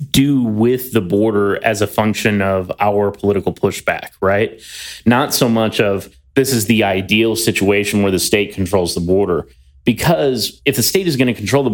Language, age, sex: English, 30-49, male